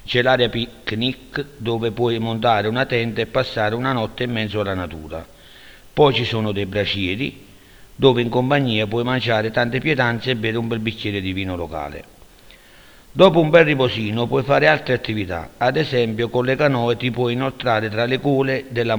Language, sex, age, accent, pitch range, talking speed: Italian, male, 50-69, native, 105-130 Hz, 175 wpm